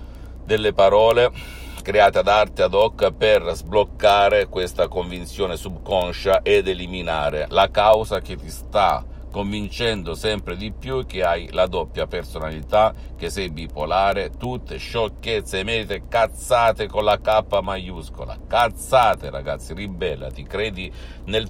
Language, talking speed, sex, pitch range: Italian, 125 wpm, male, 80-110 Hz